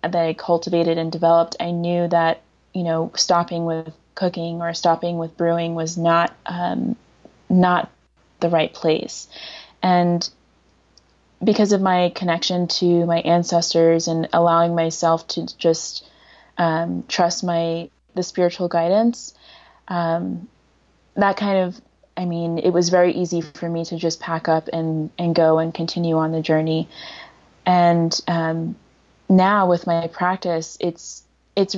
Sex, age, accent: female, 20-39, American